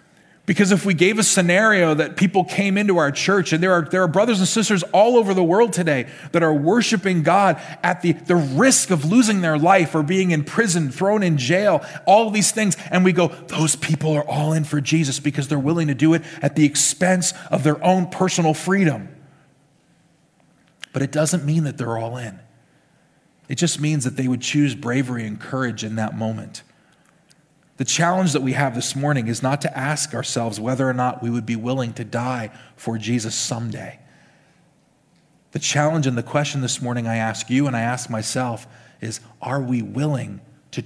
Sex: male